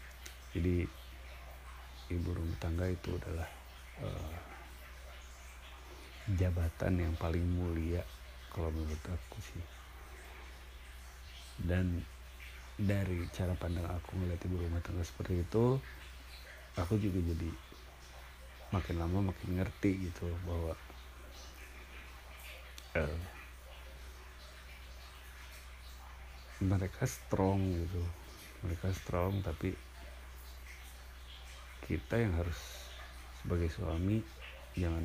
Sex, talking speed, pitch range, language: male, 80 wpm, 65-85 Hz, Indonesian